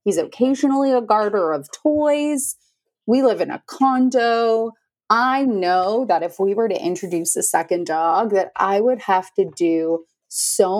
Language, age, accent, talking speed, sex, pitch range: English, 30-49, American, 160 wpm, female, 170-255 Hz